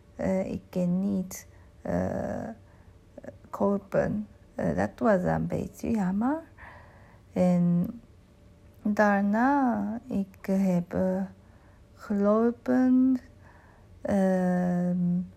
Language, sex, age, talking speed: Dutch, female, 50-69, 85 wpm